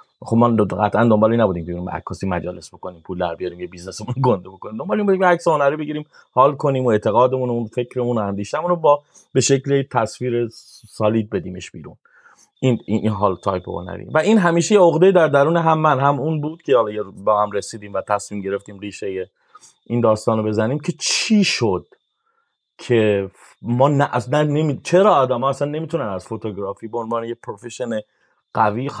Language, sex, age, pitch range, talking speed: Persian, male, 30-49, 105-150 Hz, 170 wpm